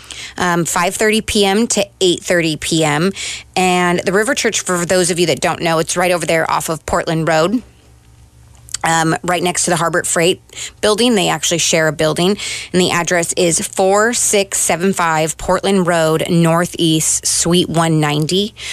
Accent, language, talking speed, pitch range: American, English, 175 wpm, 165-190 Hz